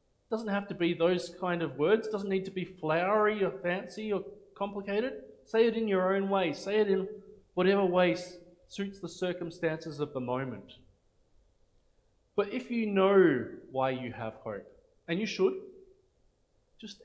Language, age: English, 20-39